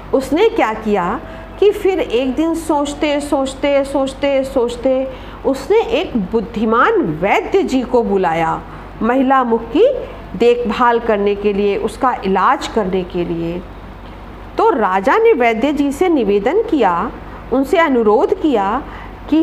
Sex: female